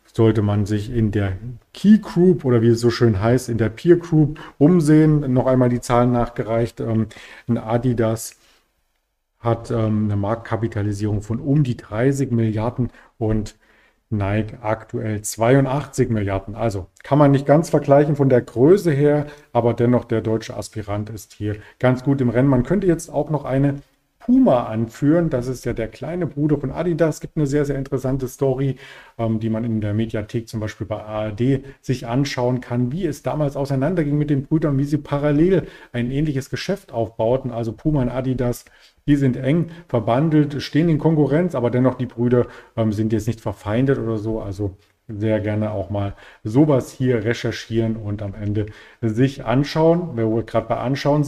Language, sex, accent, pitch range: German, male, German, 110-145 Hz